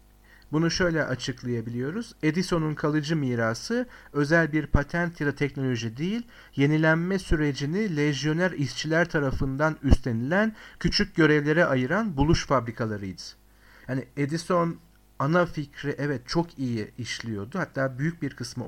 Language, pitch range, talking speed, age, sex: Turkish, 115-155 Hz, 115 wpm, 50-69, male